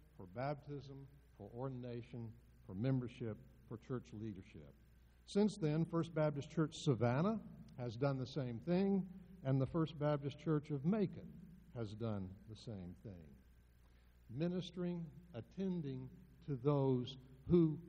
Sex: male